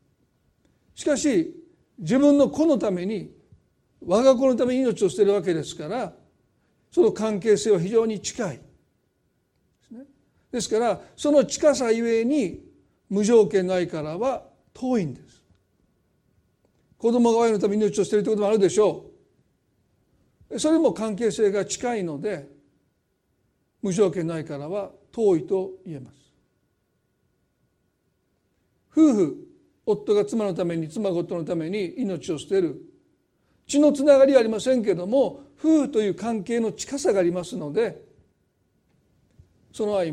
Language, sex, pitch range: Japanese, male, 175-260 Hz